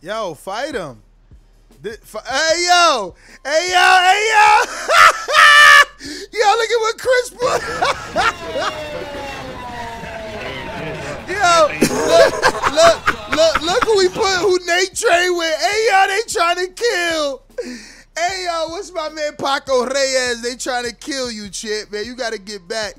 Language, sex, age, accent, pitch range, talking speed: English, male, 20-39, American, 210-315 Hz, 135 wpm